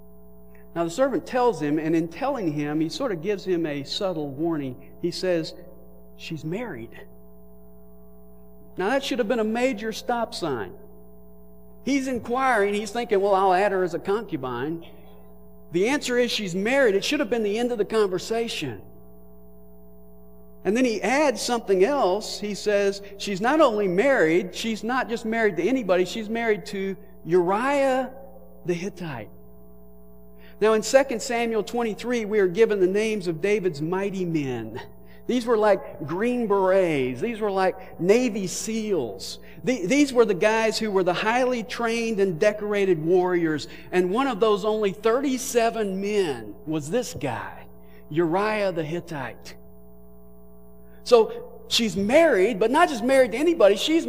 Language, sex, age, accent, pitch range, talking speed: English, male, 50-69, American, 140-230 Hz, 155 wpm